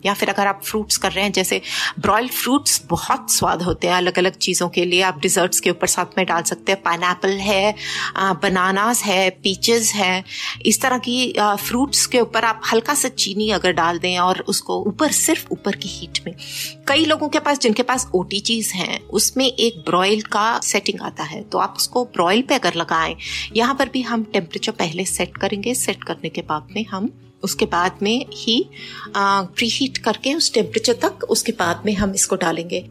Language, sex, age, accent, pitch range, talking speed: Hindi, female, 30-49, native, 190-245 Hz, 200 wpm